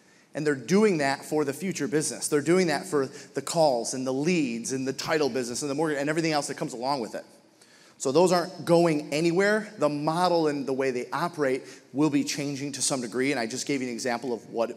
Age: 30-49